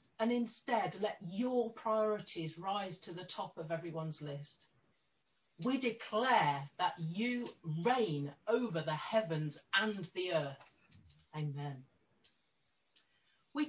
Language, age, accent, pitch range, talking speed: English, 40-59, British, 155-220 Hz, 110 wpm